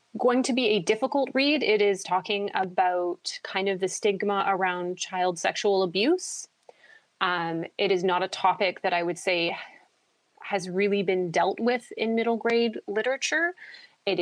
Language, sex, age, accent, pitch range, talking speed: English, female, 30-49, American, 180-245 Hz, 160 wpm